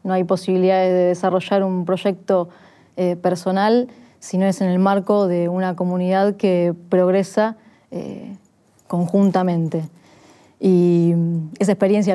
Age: 20-39